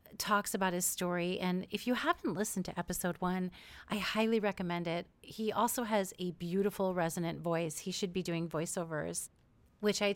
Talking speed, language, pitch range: 175 wpm, English, 185-220 Hz